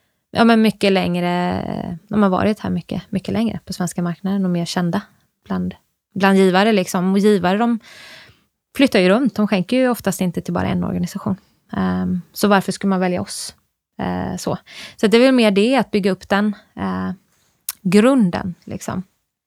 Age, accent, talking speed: 20-39, native, 155 wpm